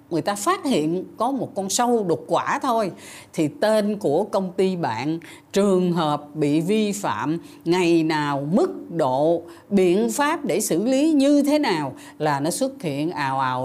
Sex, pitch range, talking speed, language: female, 155-220 Hz, 175 wpm, Vietnamese